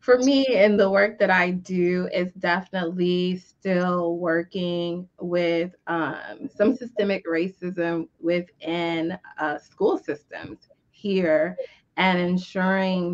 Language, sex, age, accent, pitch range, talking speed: English, female, 20-39, American, 170-185 Hz, 110 wpm